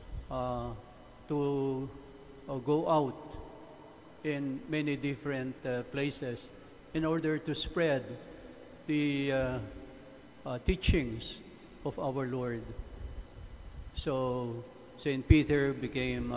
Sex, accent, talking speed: male, Filipino, 90 wpm